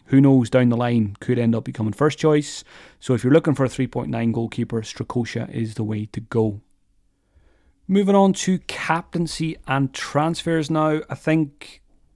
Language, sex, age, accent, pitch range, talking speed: English, male, 30-49, British, 115-140 Hz, 170 wpm